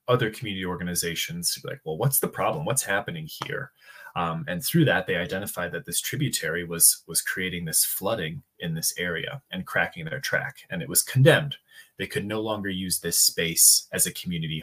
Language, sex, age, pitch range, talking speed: English, male, 20-39, 90-145 Hz, 195 wpm